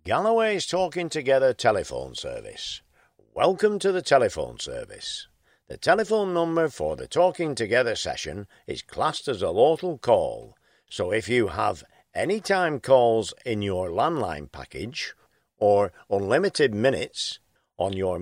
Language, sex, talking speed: English, male, 130 wpm